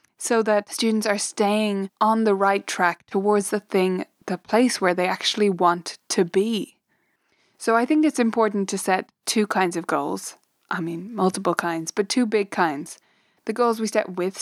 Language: English